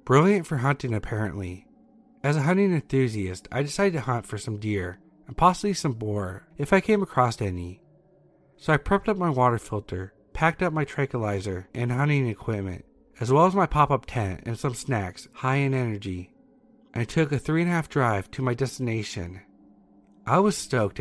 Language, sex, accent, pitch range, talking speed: English, male, American, 105-155 Hz, 185 wpm